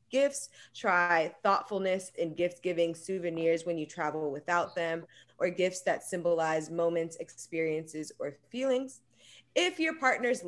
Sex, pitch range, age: female, 155-185 Hz, 20-39